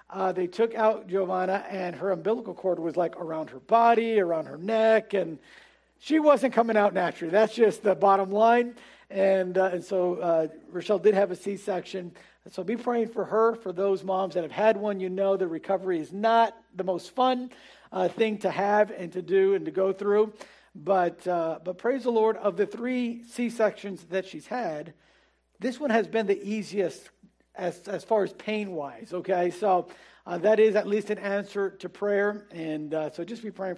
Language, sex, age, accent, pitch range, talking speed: English, male, 50-69, American, 185-225 Hz, 200 wpm